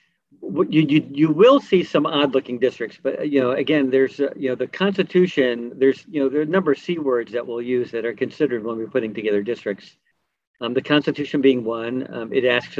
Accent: American